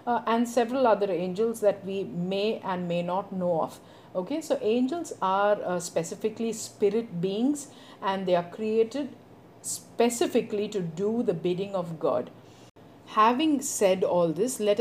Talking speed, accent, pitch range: 150 wpm, Indian, 180-220 Hz